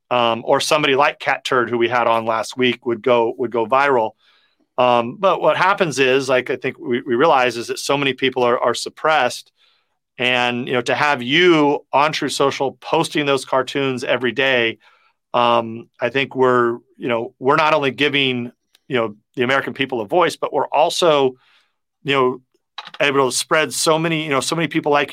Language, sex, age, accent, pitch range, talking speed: English, male, 40-59, American, 125-155 Hz, 200 wpm